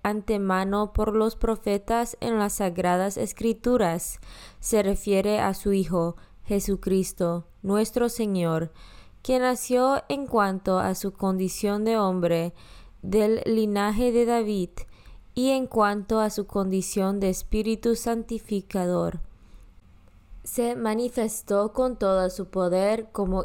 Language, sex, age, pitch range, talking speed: Spanish, female, 20-39, 185-225 Hz, 115 wpm